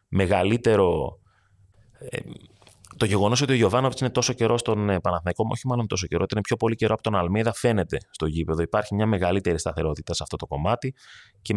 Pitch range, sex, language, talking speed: 95-120 Hz, male, Greek, 175 wpm